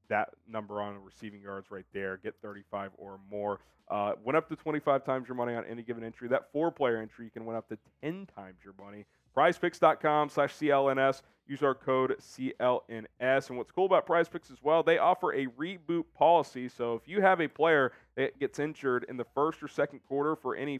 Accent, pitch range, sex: American, 110-145 Hz, male